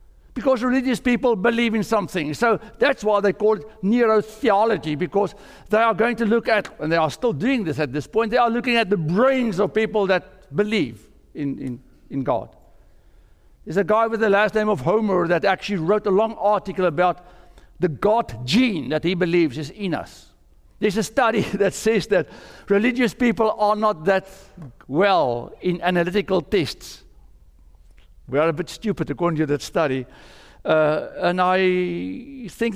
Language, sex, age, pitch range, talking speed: English, male, 60-79, 155-220 Hz, 175 wpm